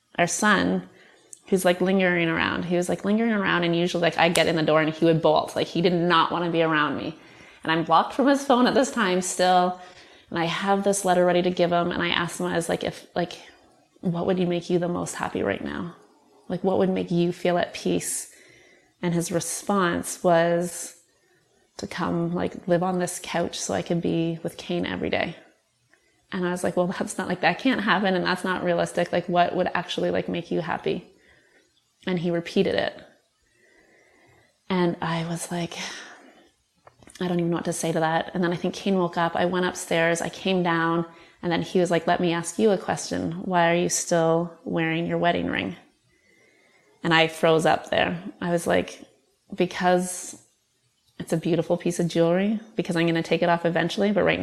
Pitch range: 170-185 Hz